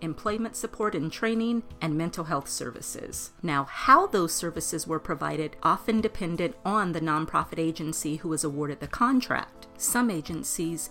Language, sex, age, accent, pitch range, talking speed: English, female, 40-59, American, 155-220 Hz, 150 wpm